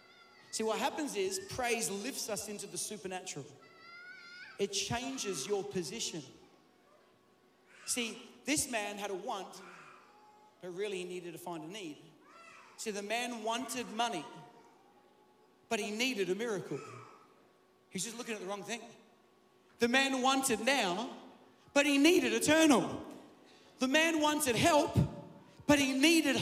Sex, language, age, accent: male, English, 40-59, Australian